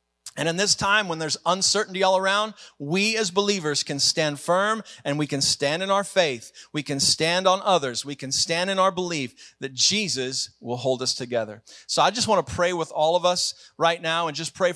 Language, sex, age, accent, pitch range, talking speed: English, male, 40-59, American, 155-195 Hz, 220 wpm